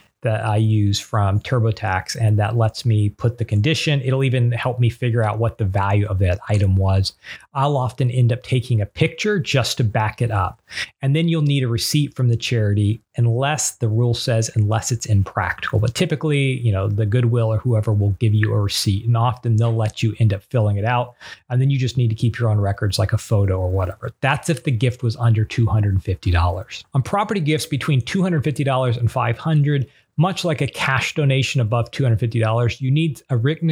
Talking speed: 225 wpm